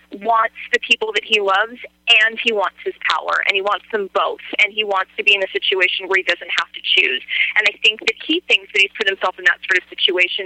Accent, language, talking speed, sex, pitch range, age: American, English, 260 wpm, female, 190-310 Hz, 20-39